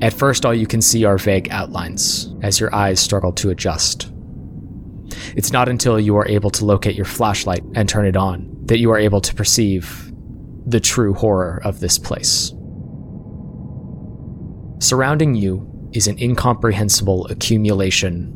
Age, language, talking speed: 20-39, English, 155 wpm